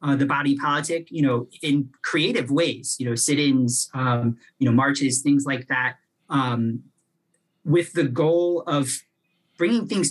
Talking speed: 155 wpm